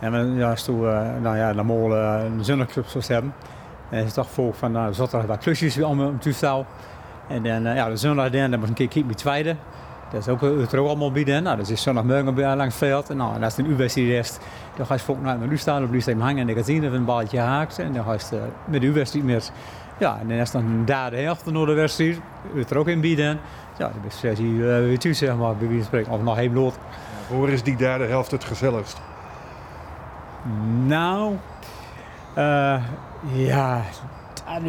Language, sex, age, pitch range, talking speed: Dutch, male, 60-79, 115-140 Hz, 225 wpm